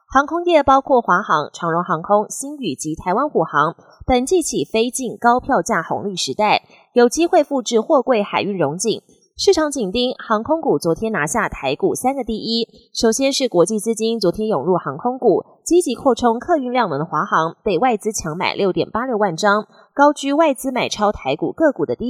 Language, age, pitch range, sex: Chinese, 20-39, 195-270 Hz, female